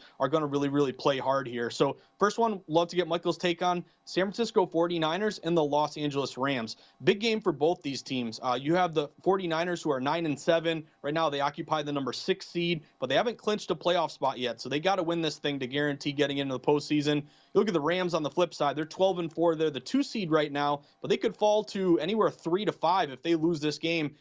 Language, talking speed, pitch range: English, 255 wpm, 145-175 Hz